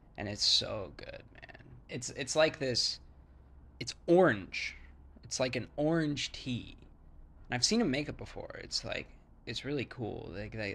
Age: 20-39